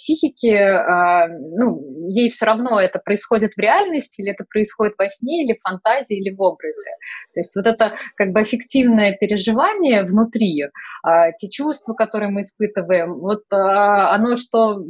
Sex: female